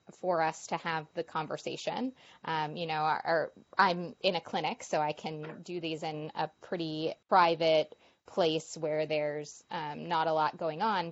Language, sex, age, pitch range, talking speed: English, female, 20-39, 160-190 Hz, 180 wpm